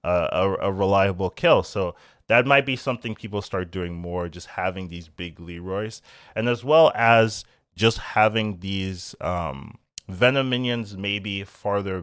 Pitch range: 100-135 Hz